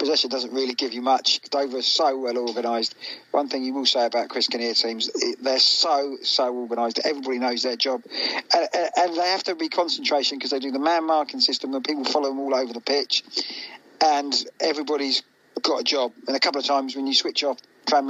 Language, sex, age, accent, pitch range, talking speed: English, male, 40-59, British, 130-160 Hz, 220 wpm